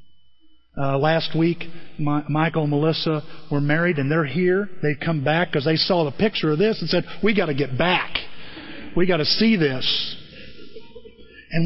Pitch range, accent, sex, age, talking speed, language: 135-175 Hz, American, male, 40-59, 180 wpm, English